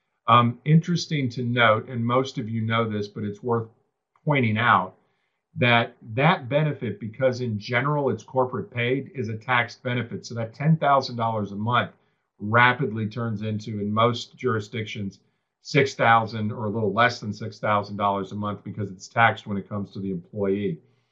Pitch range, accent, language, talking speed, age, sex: 105-125 Hz, American, English, 160 wpm, 50-69, male